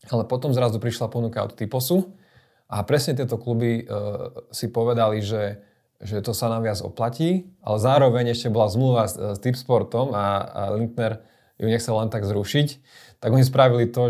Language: Slovak